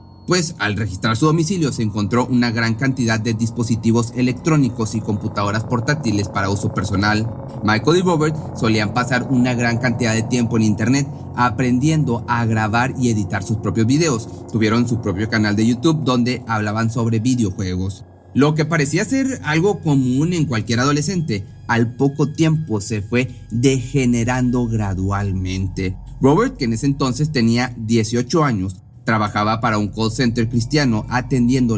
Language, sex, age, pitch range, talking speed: Spanish, male, 30-49, 110-130 Hz, 150 wpm